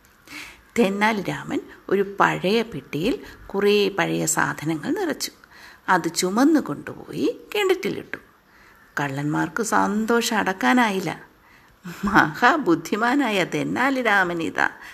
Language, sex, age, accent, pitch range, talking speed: Malayalam, female, 50-69, native, 170-265 Hz, 70 wpm